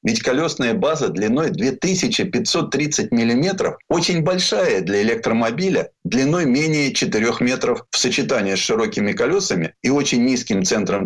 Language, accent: Russian, native